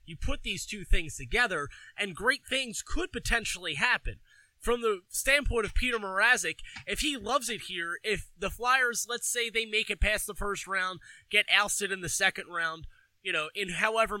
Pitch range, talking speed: 165-225 Hz, 190 wpm